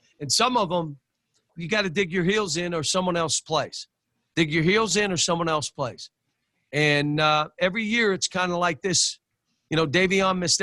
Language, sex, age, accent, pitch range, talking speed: English, male, 50-69, American, 155-200 Hz, 205 wpm